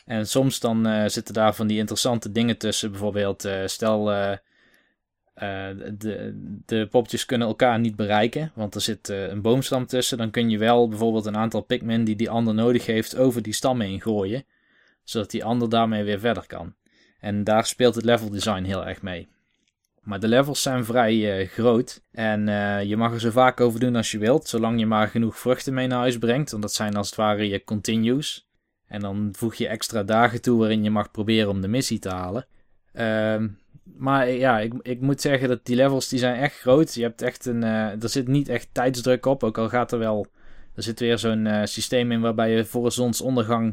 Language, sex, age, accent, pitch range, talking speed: Dutch, male, 20-39, Dutch, 110-125 Hz, 215 wpm